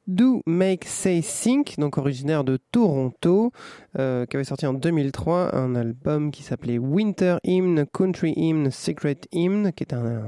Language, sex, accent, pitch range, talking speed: French, male, French, 130-175 Hz, 165 wpm